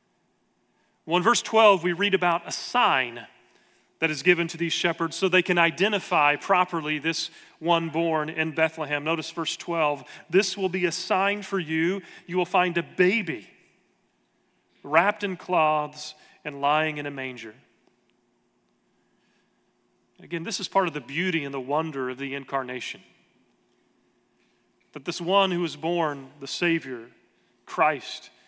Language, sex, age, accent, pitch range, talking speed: English, male, 40-59, American, 130-170 Hz, 150 wpm